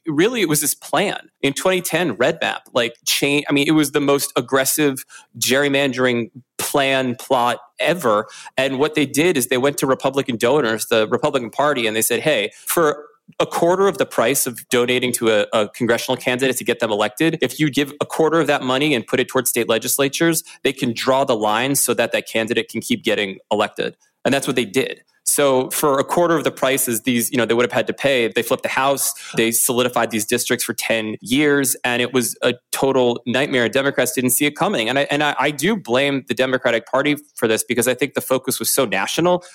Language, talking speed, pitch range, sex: English, 220 wpm, 115-140 Hz, male